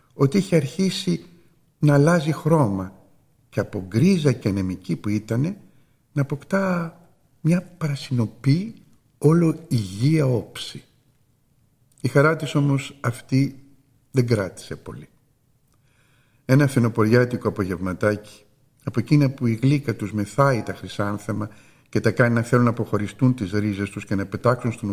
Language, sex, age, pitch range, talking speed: Greek, male, 50-69, 110-145 Hz, 130 wpm